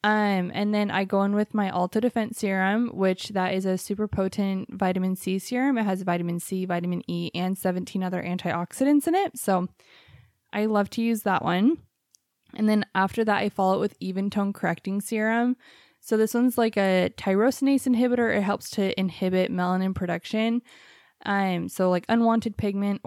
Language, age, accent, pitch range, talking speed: English, 20-39, American, 185-220 Hz, 180 wpm